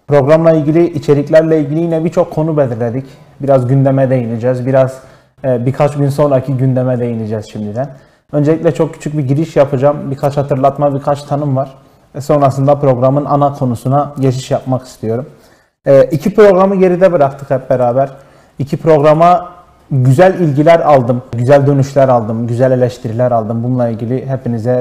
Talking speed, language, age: 140 wpm, Turkish, 30-49